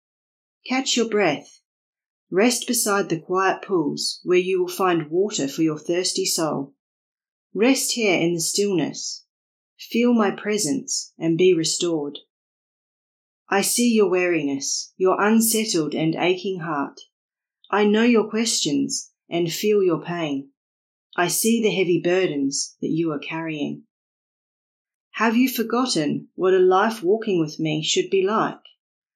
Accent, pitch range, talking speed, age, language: Australian, 160-215 Hz, 135 wpm, 40-59, English